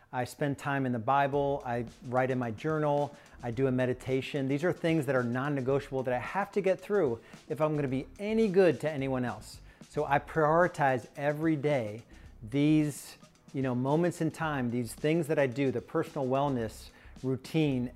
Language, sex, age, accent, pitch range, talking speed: English, male, 40-59, American, 125-155 Hz, 185 wpm